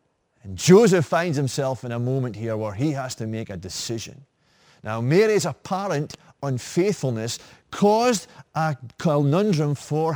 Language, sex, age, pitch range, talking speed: English, male, 30-49, 120-185 Hz, 135 wpm